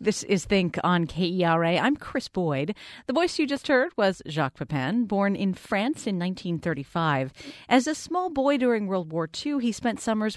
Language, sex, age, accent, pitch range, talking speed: English, female, 40-59, American, 165-235 Hz, 185 wpm